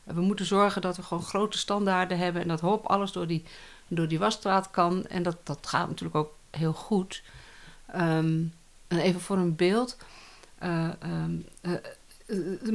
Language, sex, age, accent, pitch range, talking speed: Dutch, female, 60-79, Dutch, 175-210 Hz, 175 wpm